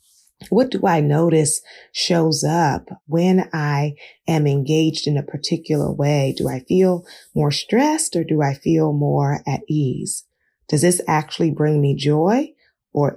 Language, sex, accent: English, female, American